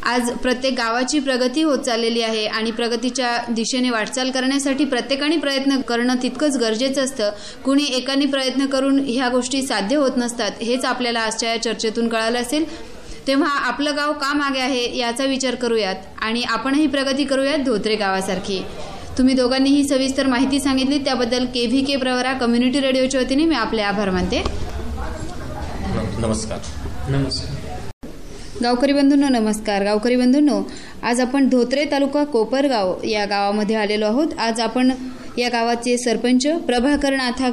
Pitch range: 220-270 Hz